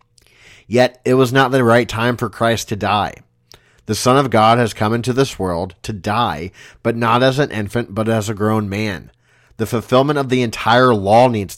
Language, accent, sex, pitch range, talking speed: English, American, male, 105-120 Hz, 200 wpm